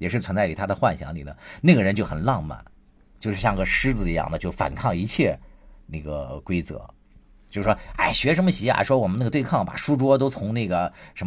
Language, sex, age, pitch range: Chinese, male, 50-69, 85-115 Hz